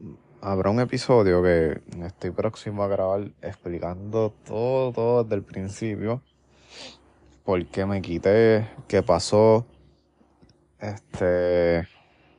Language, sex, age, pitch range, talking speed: Spanish, male, 20-39, 85-110 Hz, 100 wpm